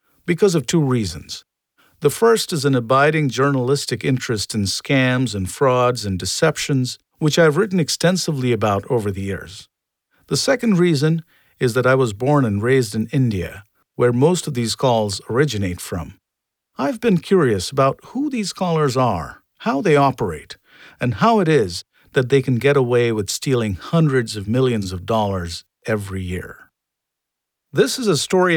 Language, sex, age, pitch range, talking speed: English, male, 50-69, 110-150 Hz, 160 wpm